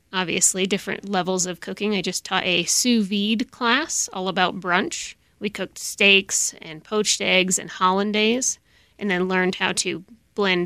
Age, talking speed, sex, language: 30-49, 165 wpm, female, English